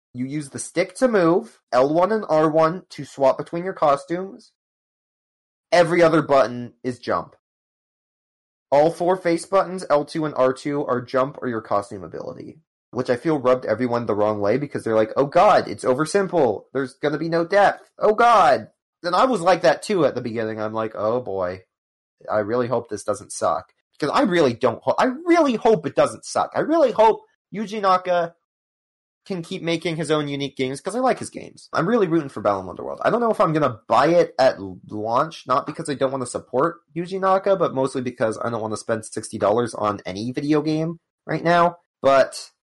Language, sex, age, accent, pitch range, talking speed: English, male, 30-49, American, 125-175 Hz, 200 wpm